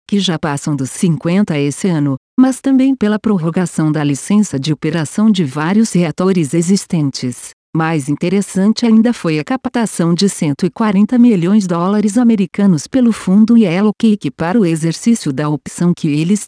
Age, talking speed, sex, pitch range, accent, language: 50-69, 155 wpm, female, 160-225 Hz, Brazilian, Portuguese